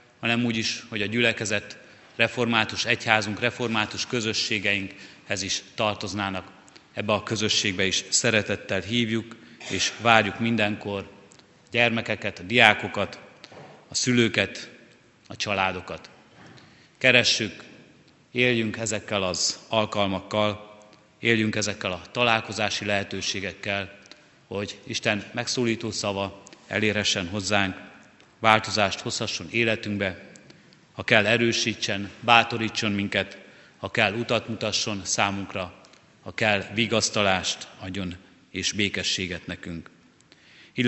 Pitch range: 100-115 Hz